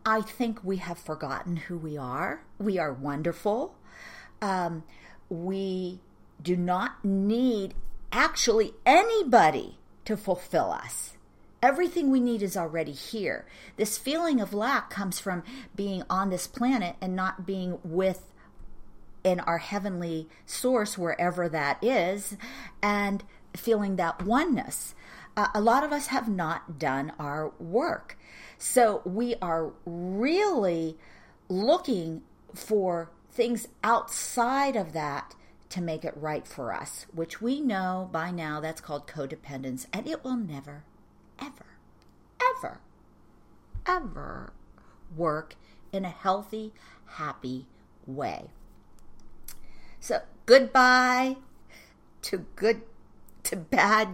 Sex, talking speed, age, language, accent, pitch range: female, 115 wpm, 50-69, English, American, 165-230 Hz